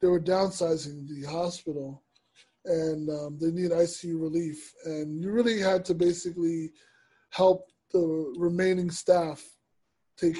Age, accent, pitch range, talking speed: 20-39, American, 160-185 Hz, 125 wpm